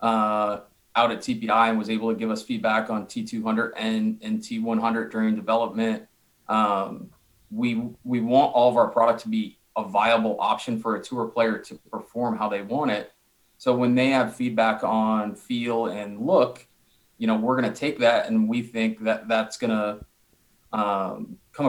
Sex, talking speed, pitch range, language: male, 175 wpm, 110-130 Hz, English